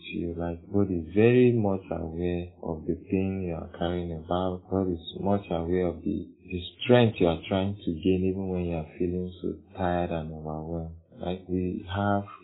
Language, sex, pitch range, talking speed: English, male, 85-100 Hz, 190 wpm